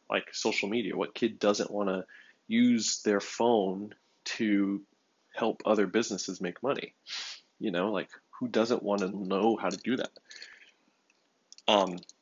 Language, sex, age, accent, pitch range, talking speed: English, male, 20-39, American, 100-115 Hz, 145 wpm